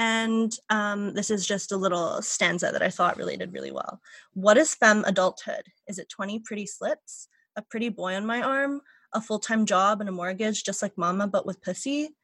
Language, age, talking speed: English, 20-39, 200 wpm